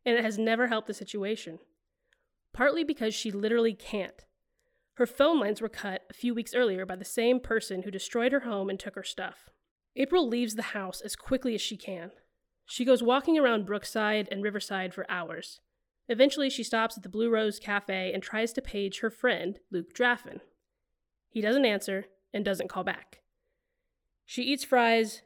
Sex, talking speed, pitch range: female, 185 wpm, 205-265 Hz